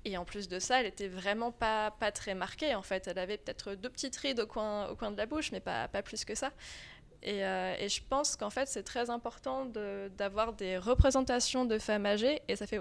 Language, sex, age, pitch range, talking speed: French, female, 20-39, 200-250 Hz, 250 wpm